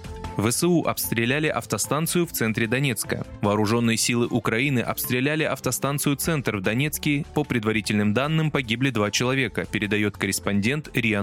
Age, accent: 20-39, native